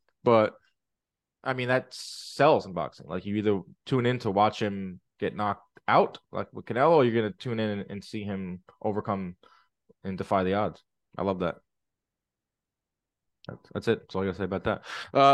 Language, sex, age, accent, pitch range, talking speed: English, male, 20-39, American, 105-155 Hz, 190 wpm